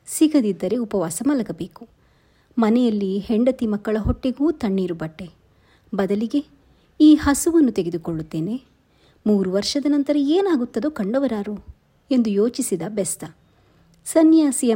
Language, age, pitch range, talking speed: Kannada, 30-49, 190-255 Hz, 90 wpm